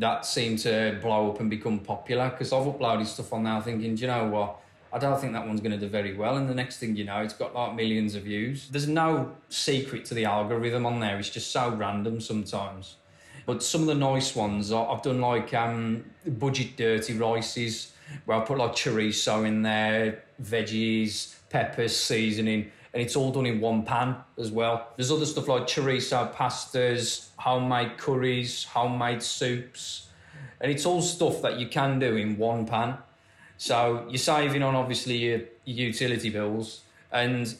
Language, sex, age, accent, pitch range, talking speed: English, male, 20-39, British, 110-135 Hz, 185 wpm